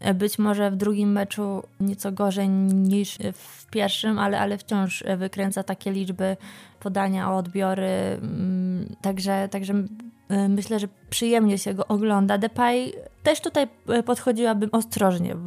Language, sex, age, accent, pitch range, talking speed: Polish, female, 20-39, native, 195-225 Hz, 125 wpm